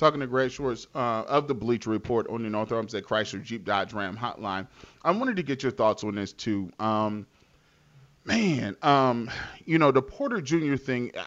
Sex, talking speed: male, 195 wpm